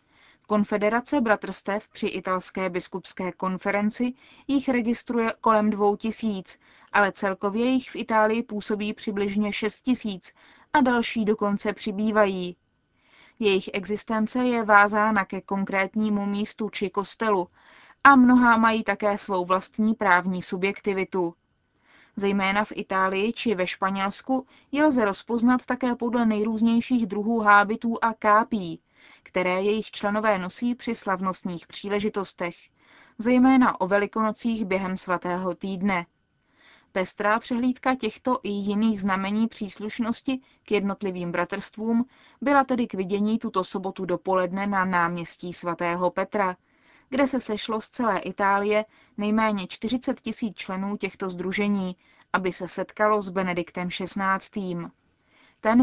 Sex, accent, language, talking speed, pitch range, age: female, native, Czech, 120 wpm, 190-225 Hz, 20-39